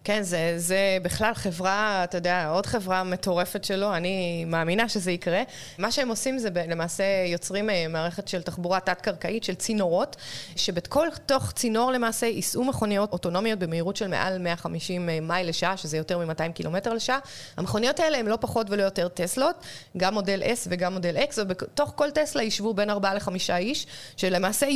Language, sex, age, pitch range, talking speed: Hebrew, female, 20-39, 175-215 Hz, 165 wpm